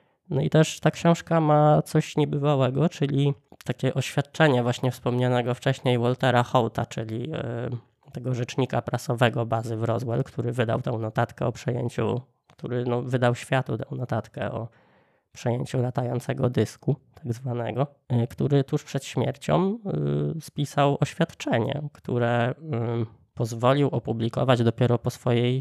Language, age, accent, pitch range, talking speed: Polish, 20-39, native, 120-140 Hz, 120 wpm